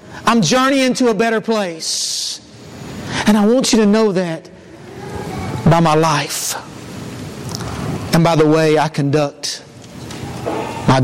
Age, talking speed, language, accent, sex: 50-69, 125 wpm, English, American, male